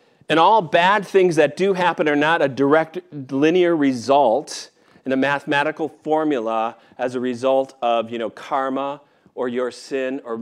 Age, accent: 40-59, American